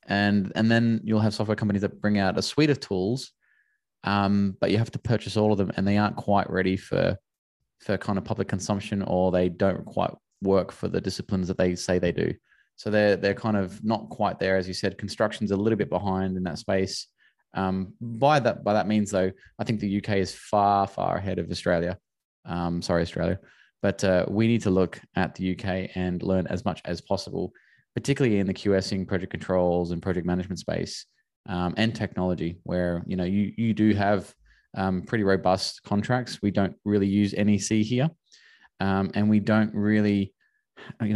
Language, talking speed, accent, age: English, 200 wpm, Australian, 20-39